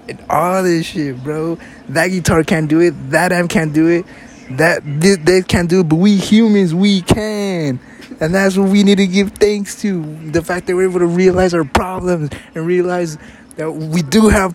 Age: 20-39